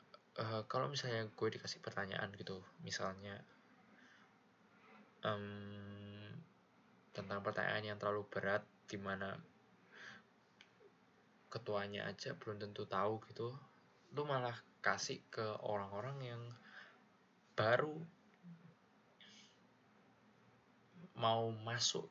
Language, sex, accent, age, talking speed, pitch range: Indonesian, male, native, 20-39, 85 wpm, 100-135 Hz